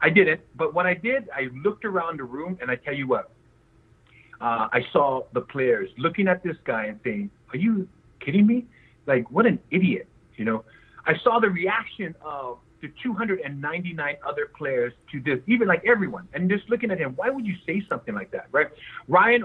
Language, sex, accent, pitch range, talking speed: English, male, American, 150-220 Hz, 200 wpm